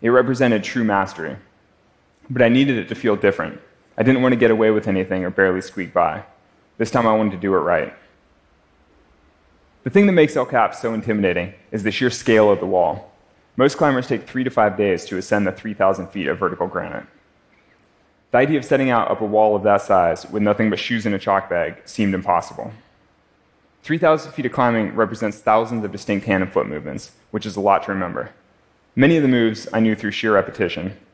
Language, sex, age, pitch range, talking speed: French, male, 20-39, 95-115 Hz, 210 wpm